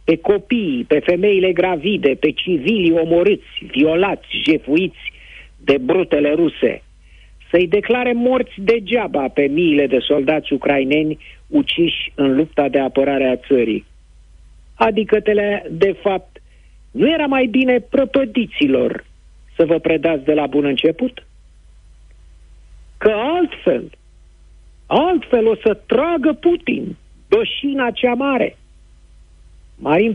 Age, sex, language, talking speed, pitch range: 50-69, male, Romanian, 110 wpm, 140-220 Hz